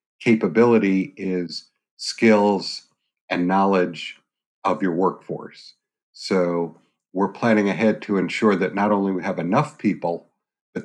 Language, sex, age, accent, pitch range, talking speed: English, male, 50-69, American, 90-110 Hz, 120 wpm